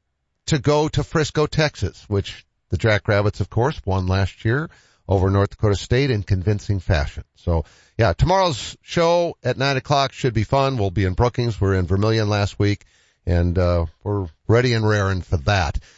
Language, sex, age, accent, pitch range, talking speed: English, male, 50-69, American, 100-140 Hz, 175 wpm